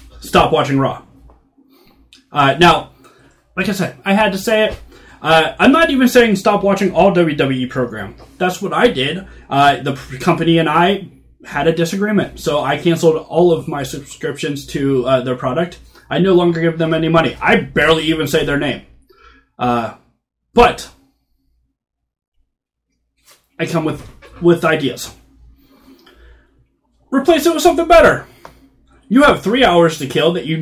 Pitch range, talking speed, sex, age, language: 140-195 Hz, 155 wpm, male, 20-39, English